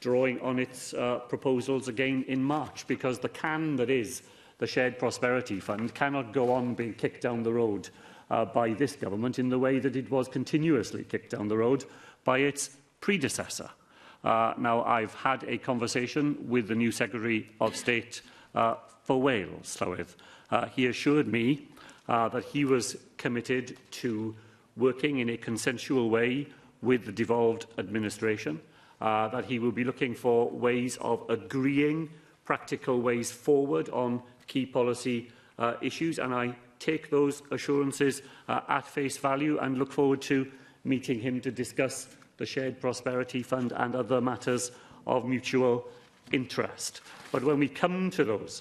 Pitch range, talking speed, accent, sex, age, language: 120-140 Hz, 160 wpm, British, male, 40-59, English